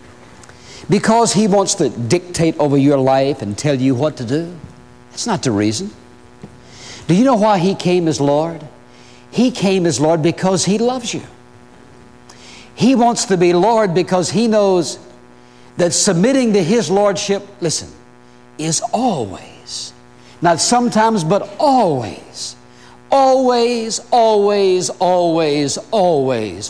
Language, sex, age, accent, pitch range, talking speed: English, male, 60-79, American, 120-190 Hz, 130 wpm